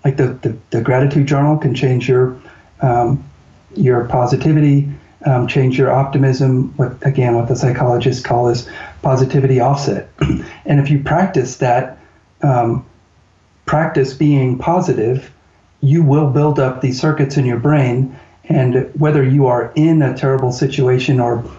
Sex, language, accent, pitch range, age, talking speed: male, English, American, 125-145 Hz, 40-59, 140 wpm